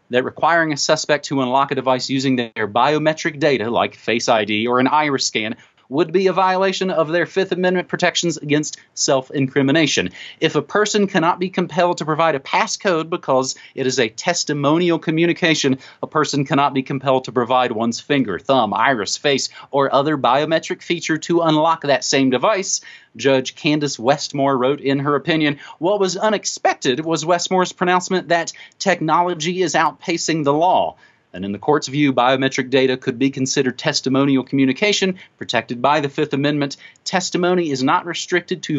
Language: English